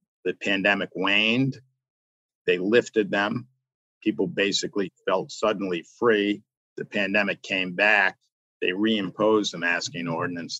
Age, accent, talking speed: 50-69, American, 115 wpm